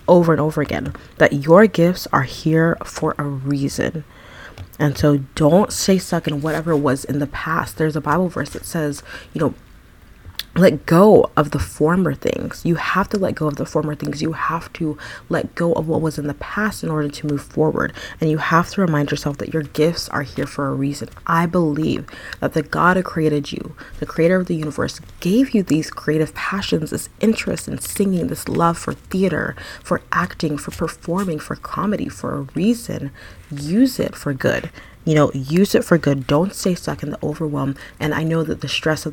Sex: female